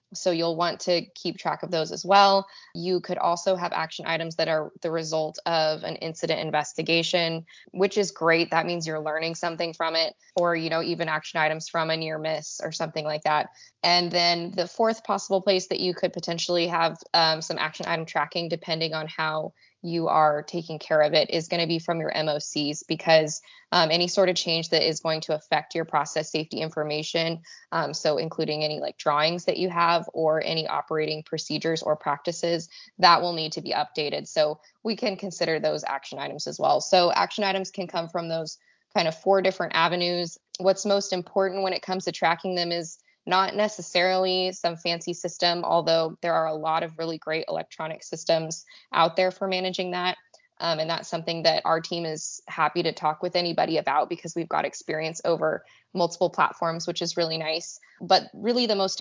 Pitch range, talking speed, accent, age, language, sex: 160-180 Hz, 200 wpm, American, 20-39, English, female